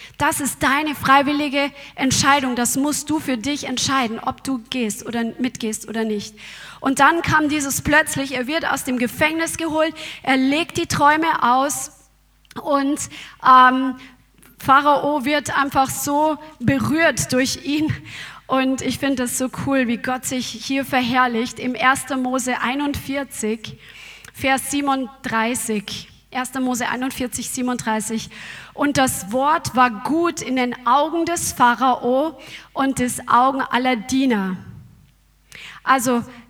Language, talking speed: German, 130 wpm